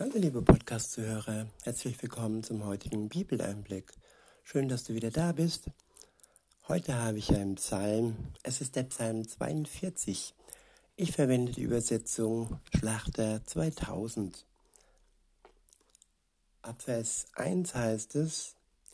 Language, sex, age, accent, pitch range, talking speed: German, male, 60-79, German, 110-135 Hz, 110 wpm